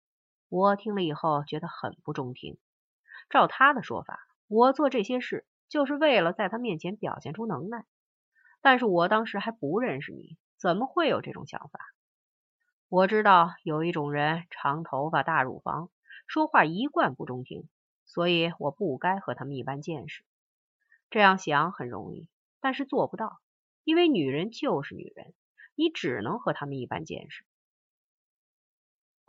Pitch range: 150-210 Hz